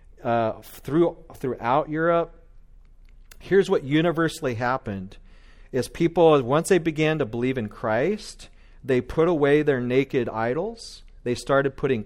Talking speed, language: 130 wpm, English